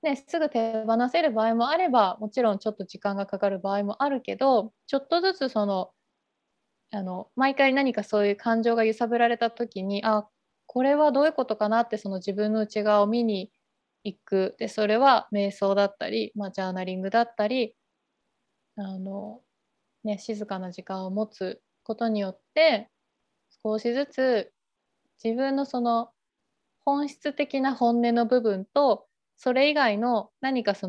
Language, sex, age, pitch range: Japanese, female, 20-39, 205-265 Hz